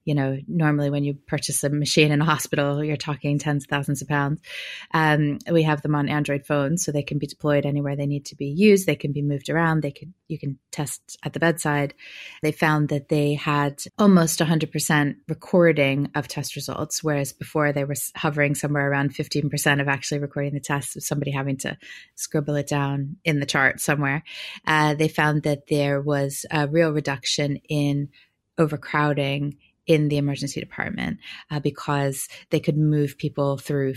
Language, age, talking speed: English, 30-49, 185 wpm